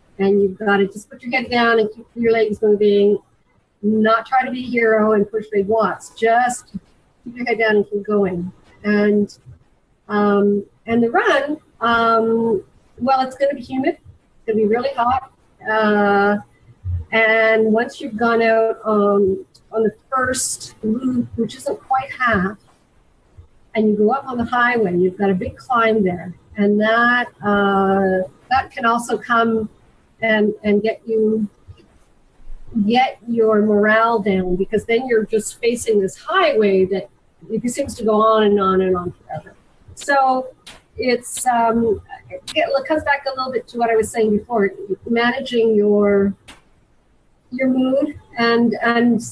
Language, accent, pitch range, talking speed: English, American, 205-245 Hz, 160 wpm